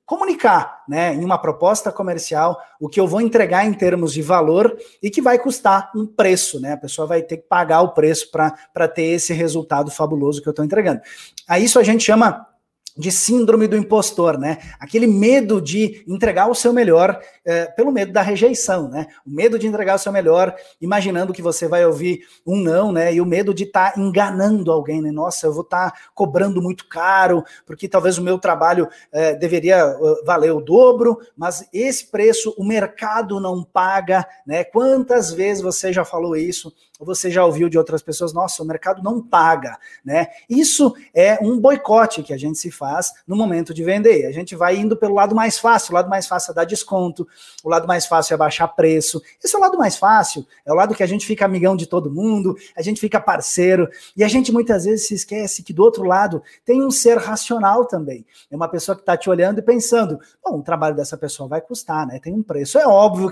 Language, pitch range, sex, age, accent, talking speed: Portuguese, 170-220 Hz, male, 20-39, Brazilian, 210 wpm